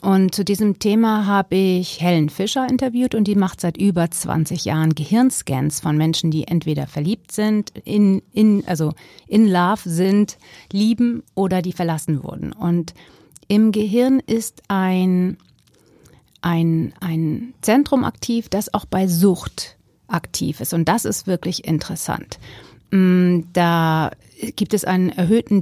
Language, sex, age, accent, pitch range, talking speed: German, female, 40-59, German, 160-205 Hz, 140 wpm